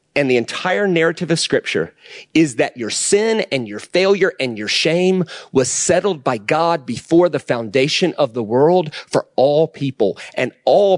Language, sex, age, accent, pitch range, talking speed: English, male, 30-49, American, 145-185 Hz, 170 wpm